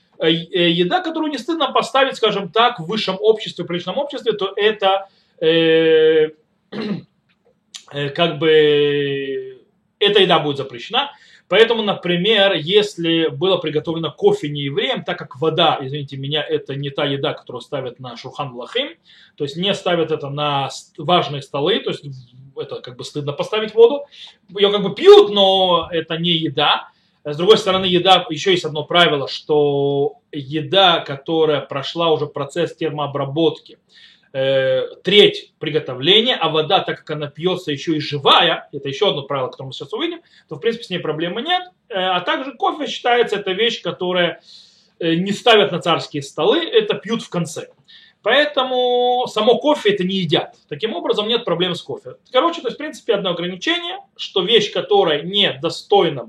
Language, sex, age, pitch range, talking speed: Russian, male, 20-39, 150-220 Hz, 160 wpm